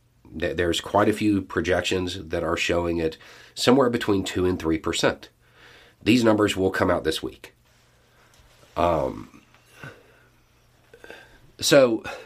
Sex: male